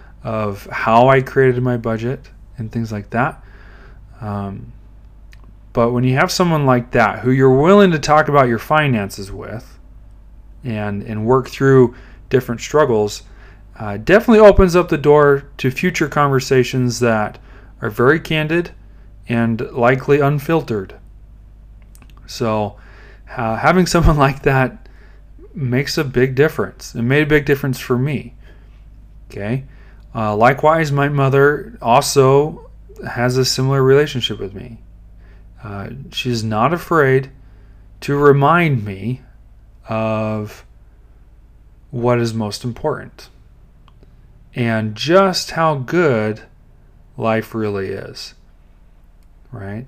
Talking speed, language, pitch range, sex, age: 120 wpm, English, 105-135 Hz, male, 30-49